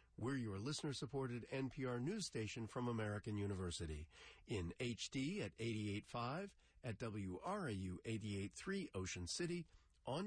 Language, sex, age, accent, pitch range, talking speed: English, male, 50-69, American, 95-145 Hz, 110 wpm